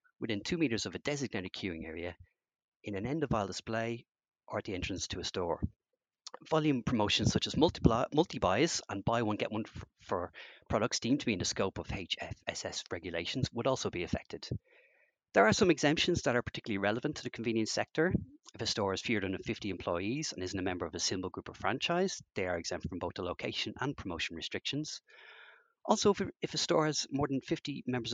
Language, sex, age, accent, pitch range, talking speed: English, male, 30-49, Irish, 105-145 Hz, 205 wpm